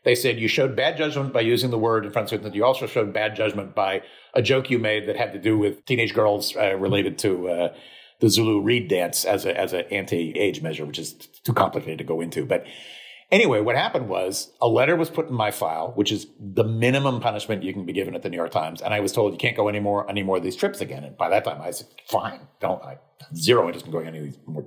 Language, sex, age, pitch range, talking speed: English, male, 50-69, 105-130 Hz, 260 wpm